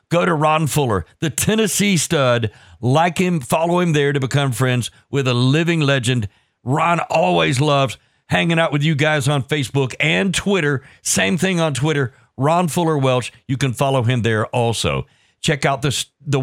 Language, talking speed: English, 175 wpm